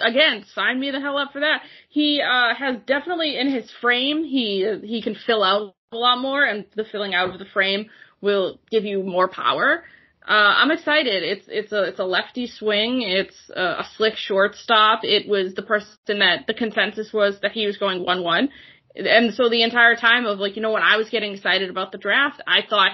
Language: English